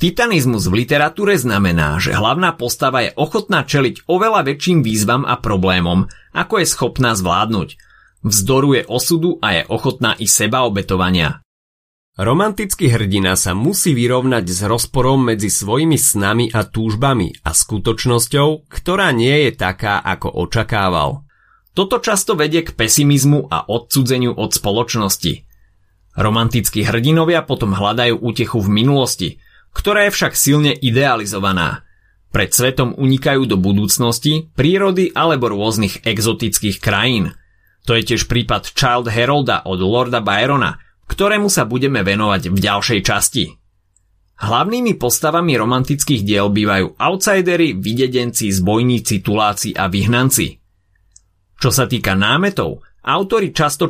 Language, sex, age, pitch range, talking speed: Slovak, male, 30-49, 100-145 Hz, 125 wpm